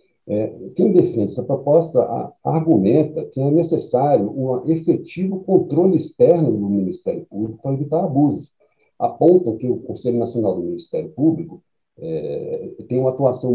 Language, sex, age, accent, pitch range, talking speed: Portuguese, male, 50-69, Brazilian, 120-160 Hz, 140 wpm